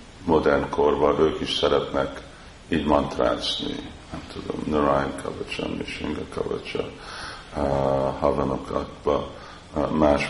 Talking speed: 85 wpm